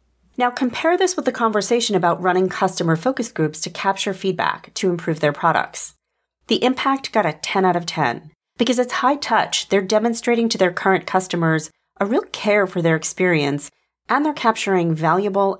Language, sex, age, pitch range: English, female, 40-59, 165-230 Hz